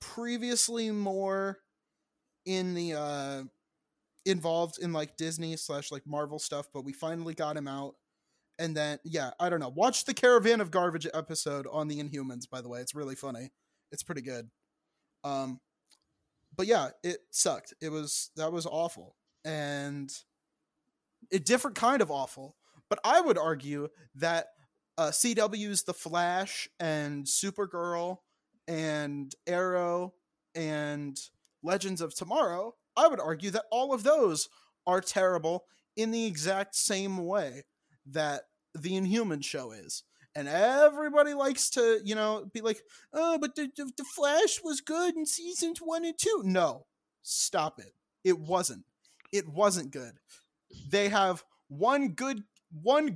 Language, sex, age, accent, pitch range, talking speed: English, male, 30-49, American, 150-225 Hz, 145 wpm